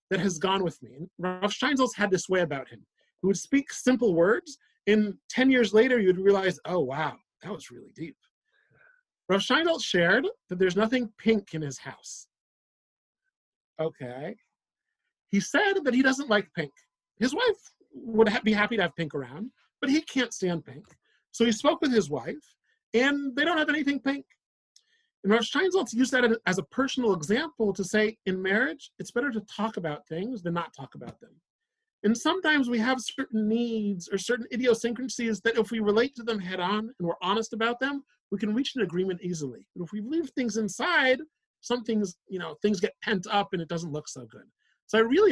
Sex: male